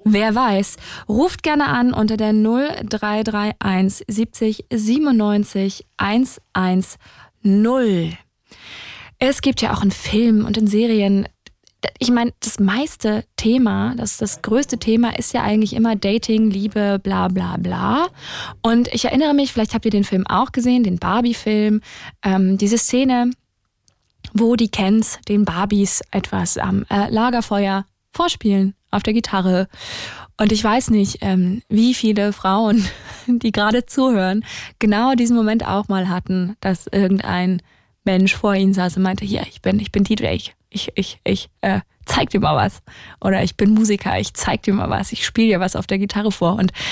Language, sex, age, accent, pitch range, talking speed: German, female, 20-39, German, 190-230 Hz, 160 wpm